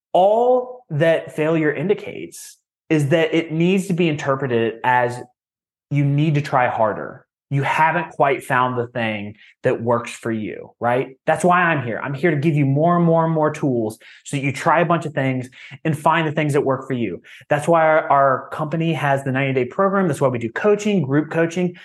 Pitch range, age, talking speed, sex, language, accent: 130-170 Hz, 30-49, 205 wpm, male, English, American